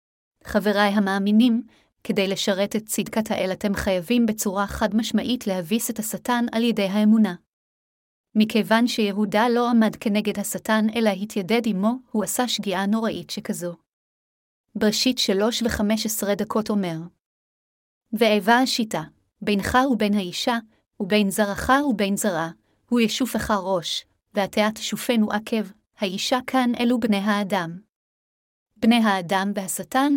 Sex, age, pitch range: female, 30-49, 200-235 Hz